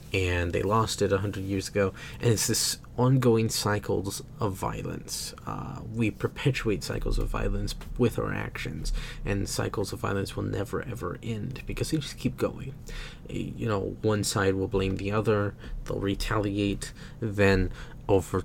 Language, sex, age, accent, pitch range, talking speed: English, male, 30-49, American, 100-120 Hz, 160 wpm